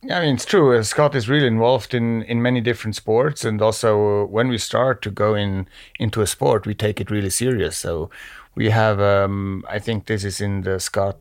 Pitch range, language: 100-115 Hz, English